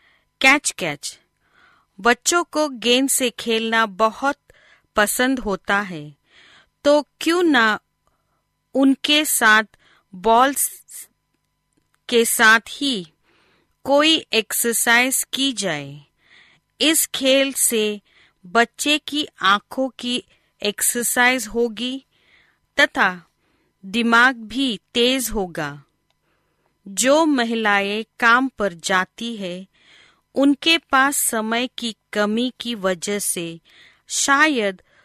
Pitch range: 200-265 Hz